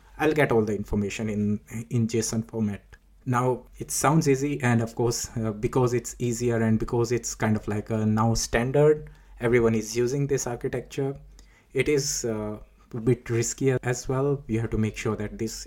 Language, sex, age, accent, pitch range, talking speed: English, male, 20-39, Indian, 110-120 Hz, 185 wpm